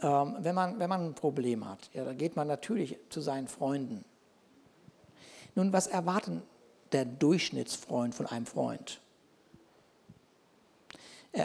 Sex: male